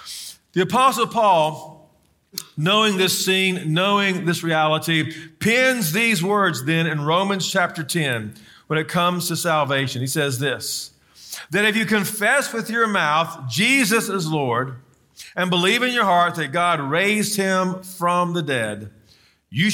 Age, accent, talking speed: 50-69, American, 145 wpm